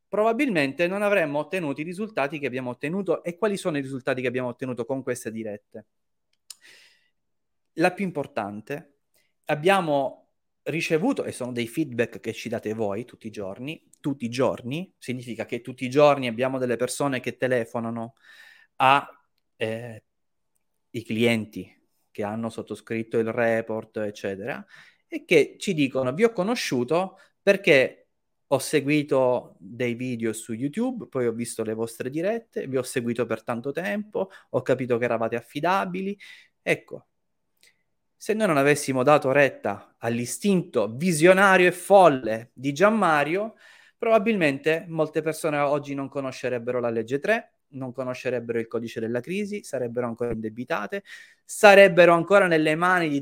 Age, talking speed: 30-49, 140 wpm